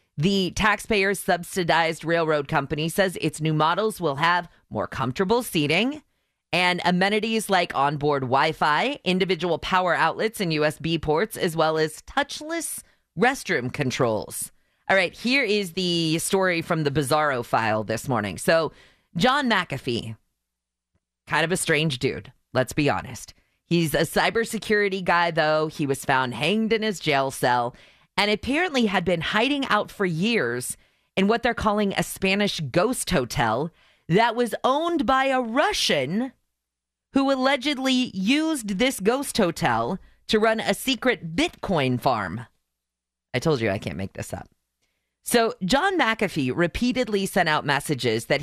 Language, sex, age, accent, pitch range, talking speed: English, female, 30-49, American, 145-215 Hz, 145 wpm